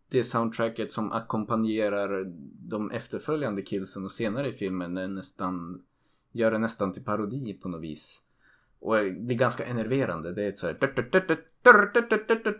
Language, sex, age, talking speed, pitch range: Swedish, male, 20-39, 145 wpm, 100-130 Hz